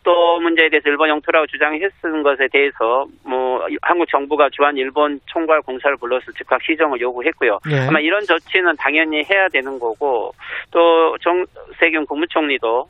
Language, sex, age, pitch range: Korean, male, 40-59, 140-185 Hz